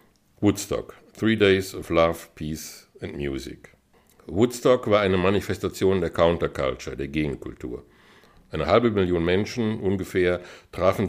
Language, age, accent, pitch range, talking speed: German, 60-79, German, 90-105 Hz, 120 wpm